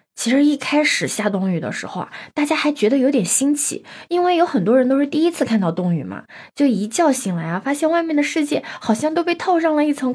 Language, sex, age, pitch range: Chinese, female, 20-39, 195-285 Hz